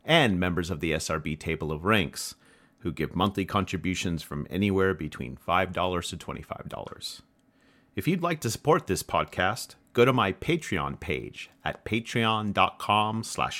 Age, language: 40-59, English